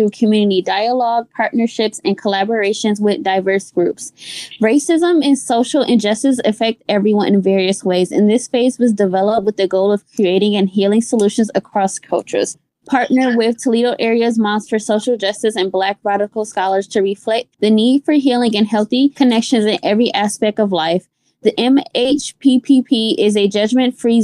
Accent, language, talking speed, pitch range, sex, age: American, English, 155 wpm, 210-250 Hz, female, 20-39